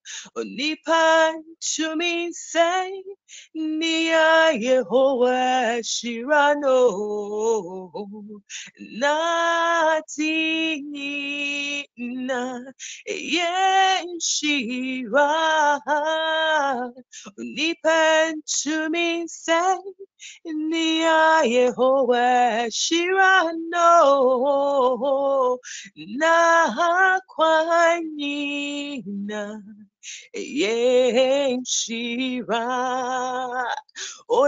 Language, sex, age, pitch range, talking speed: English, female, 30-49, 250-330 Hz, 40 wpm